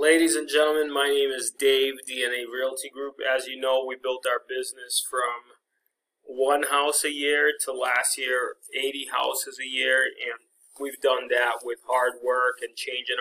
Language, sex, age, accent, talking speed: English, male, 20-39, American, 175 wpm